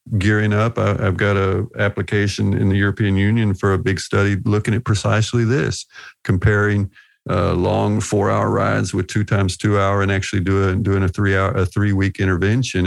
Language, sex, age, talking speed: English, male, 50-69, 185 wpm